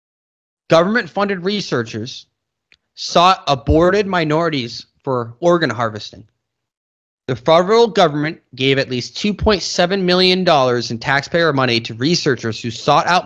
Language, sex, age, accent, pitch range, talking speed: English, male, 30-49, American, 125-185 Hz, 110 wpm